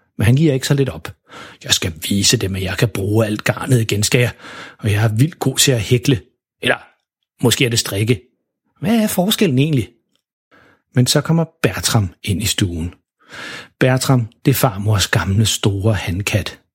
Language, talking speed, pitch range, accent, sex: Danish, 185 wpm, 115-145 Hz, native, male